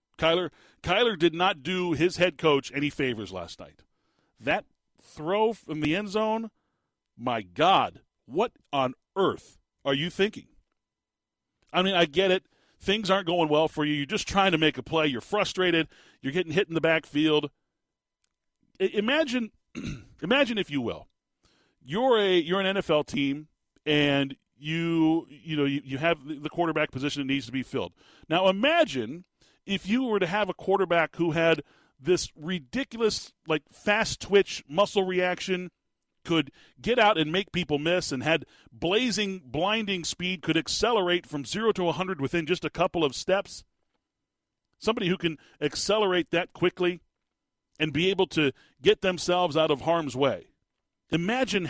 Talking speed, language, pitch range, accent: 160 wpm, English, 150-190 Hz, American